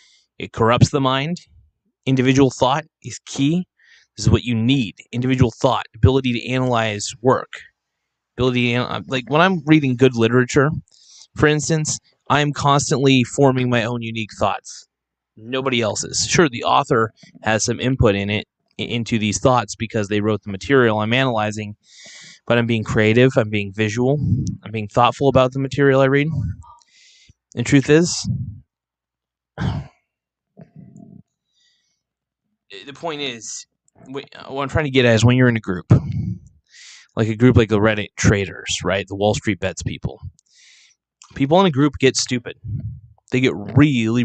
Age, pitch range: 20-39, 110-140 Hz